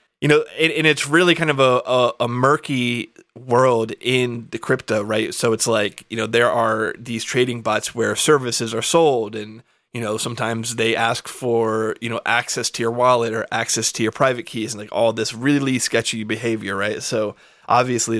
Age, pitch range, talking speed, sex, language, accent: 20-39, 110-125 Hz, 200 wpm, male, English, American